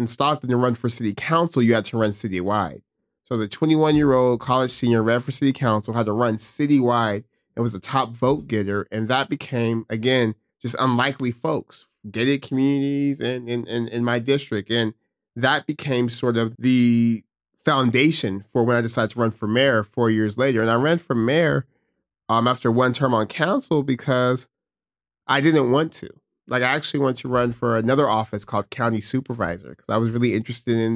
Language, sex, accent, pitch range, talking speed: English, male, American, 115-135 Hz, 195 wpm